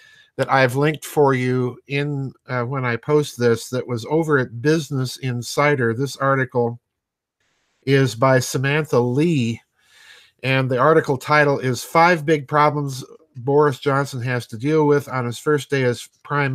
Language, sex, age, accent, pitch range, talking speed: English, male, 50-69, American, 125-150 Hz, 155 wpm